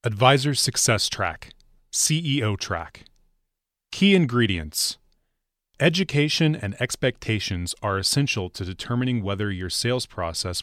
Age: 30-49